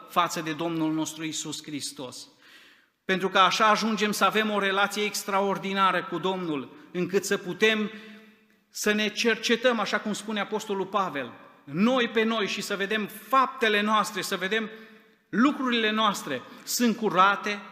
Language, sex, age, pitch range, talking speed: Romanian, male, 30-49, 170-220 Hz, 140 wpm